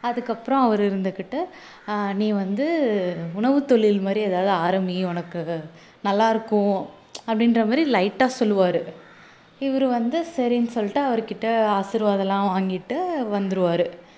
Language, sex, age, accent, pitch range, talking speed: Tamil, female, 20-39, native, 190-230 Hz, 105 wpm